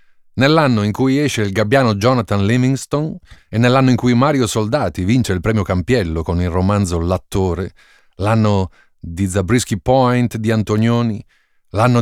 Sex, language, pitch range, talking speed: male, Italian, 95-125 Hz, 145 wpm